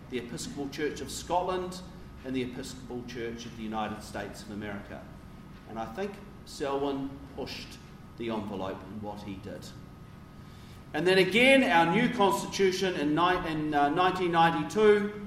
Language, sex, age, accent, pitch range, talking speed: English, male, 40-59, Australian, 130-180 Hz, 135 wpm